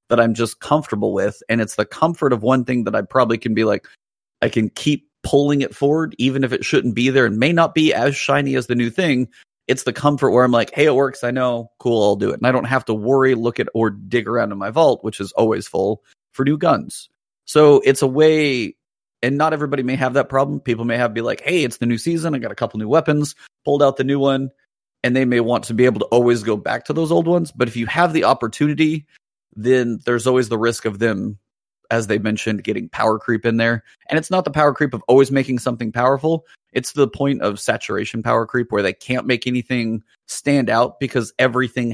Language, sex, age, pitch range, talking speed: English, male, 30-49, 115-140 Hz, 245 wpm